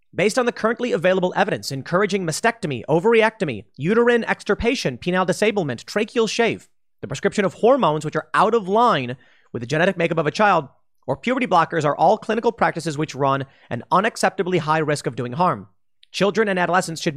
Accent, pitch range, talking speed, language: American, 135-195 Hz, 180 wpm, English